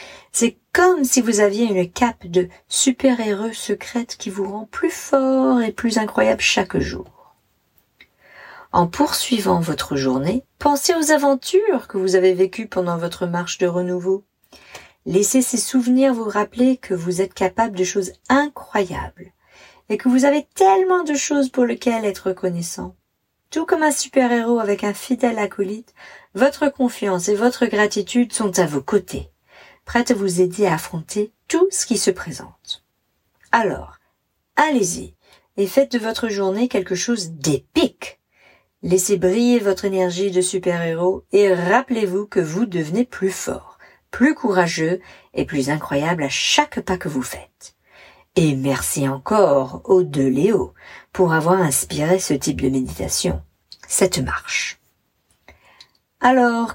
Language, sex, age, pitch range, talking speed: English, female, 40-59, 180-245 Hz, 145 wpm